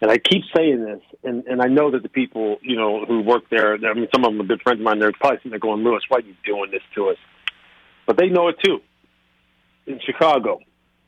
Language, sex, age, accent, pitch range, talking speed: English, male, 50-69, American, 110-165 Hz, 255 wpm